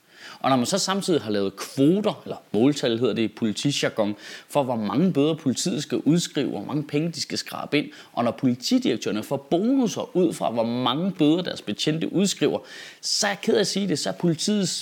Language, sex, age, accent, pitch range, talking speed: Danish, male, 30-49, native, 135-185 Hz, 210 wpm